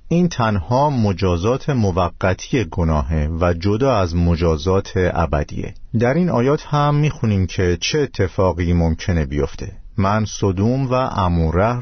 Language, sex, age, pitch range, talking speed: Persian, male, 50-69, 85-110 Hz, 120 wpm